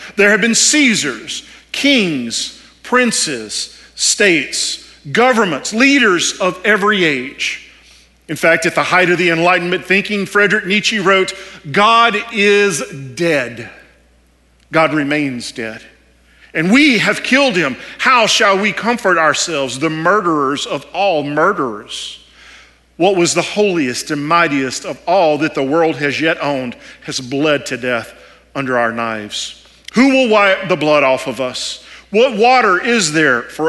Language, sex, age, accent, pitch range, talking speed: English, male, 50-69, American, 130-200 Hz, 140 wpm